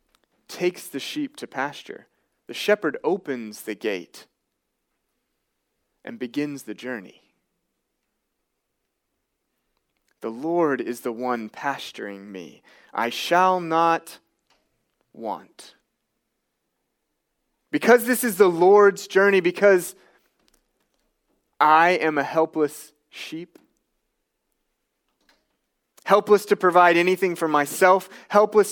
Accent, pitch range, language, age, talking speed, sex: American, 145-195 Hz, English, 30-49, 90 wpm, male